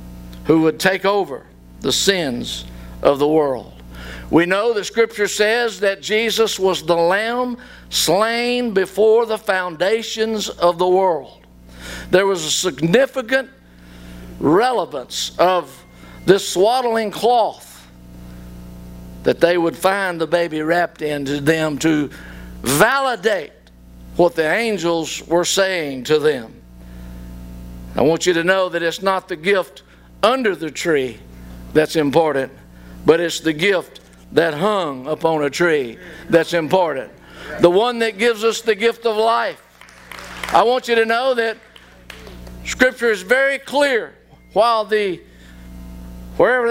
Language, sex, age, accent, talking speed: English, male, 50-69, American, 130 wpm